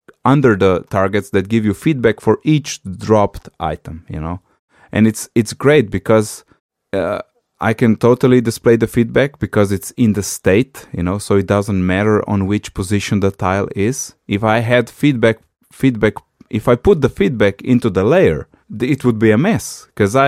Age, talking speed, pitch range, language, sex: 20-39, 180 wpm, 95-120 Hz, English, male